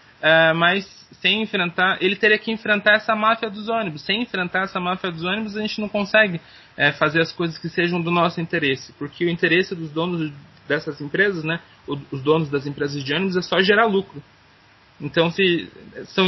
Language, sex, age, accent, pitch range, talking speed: Portuguese, male, 20-39, Brazilian, 145-195 Hz, 190 wpm